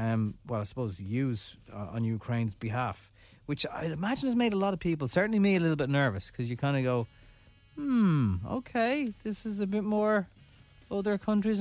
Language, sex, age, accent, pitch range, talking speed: English, male, 30-49, Irish, 115-175 Hz, 195 wpm